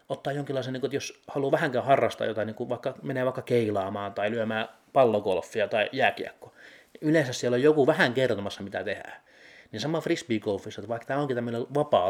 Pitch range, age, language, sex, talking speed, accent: 110-155 Hz, 30-49, Finnish, male, 190 wpm, native